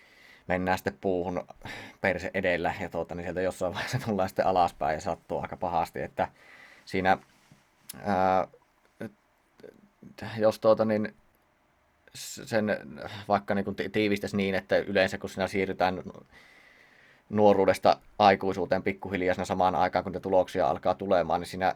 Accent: native